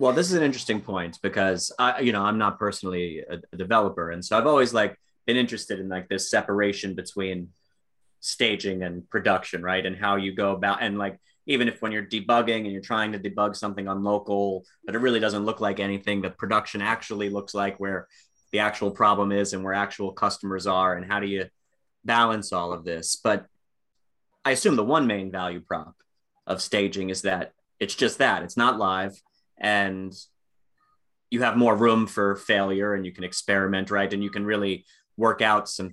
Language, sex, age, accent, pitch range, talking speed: English, male, 30-49, American, 95-110 Hz, 200 wpm